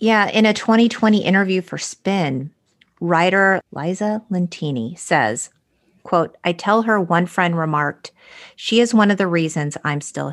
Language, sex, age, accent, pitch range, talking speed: English, female, 30-49, American, 150-180 Hz, 150 wpm